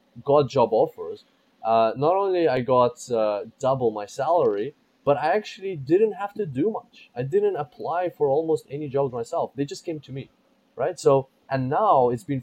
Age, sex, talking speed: 20-39, male, 190 wpm